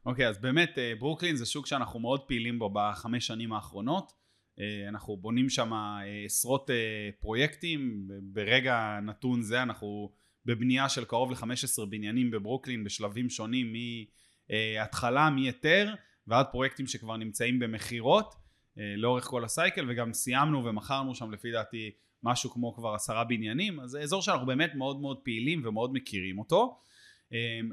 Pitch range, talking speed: 115-140 Hz, 140 wpm